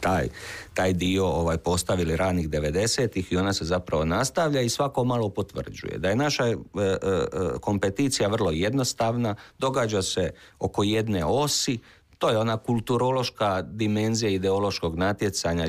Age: 50-69